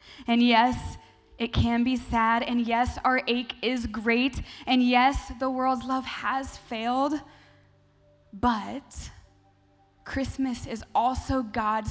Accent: American